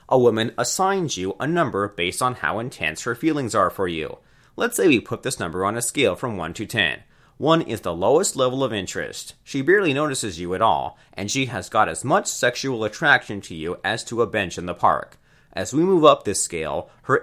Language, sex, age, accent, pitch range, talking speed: English, male, 30-49, American, 95-135 Hz, 235 wpm